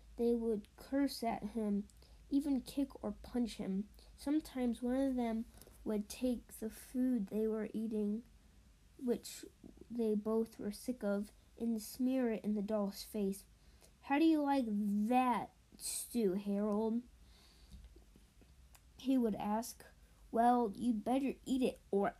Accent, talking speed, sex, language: American, 135 wpm, female, English